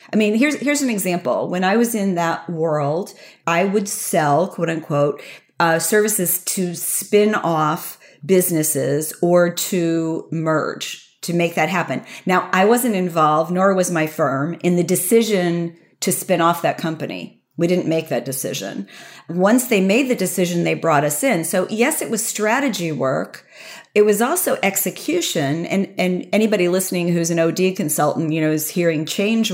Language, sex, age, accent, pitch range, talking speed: English, female, 40-59, American, 165-210 Hz, 170 wpm